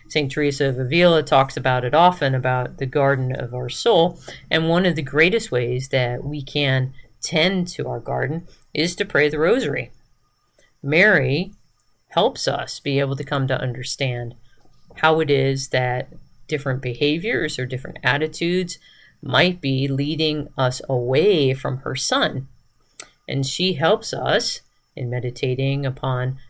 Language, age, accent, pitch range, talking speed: English, 40-59, American, 125-150 Hz, 145 wpm